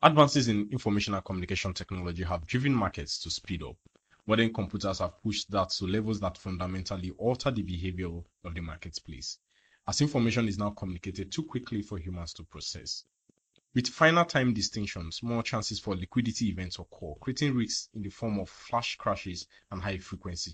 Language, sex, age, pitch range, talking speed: English, male, 30-49, 90-115 Hz, 170 wpm